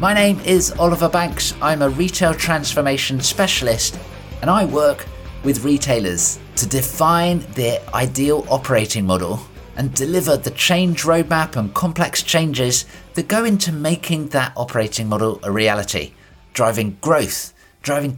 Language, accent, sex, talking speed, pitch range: English, British, male, 135 wpm, 115-160 Hz